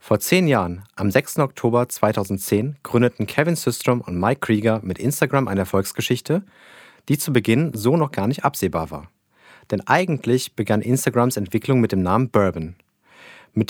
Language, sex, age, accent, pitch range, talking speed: German, male, 30-49, German, 100-135 Hz, 160 wpm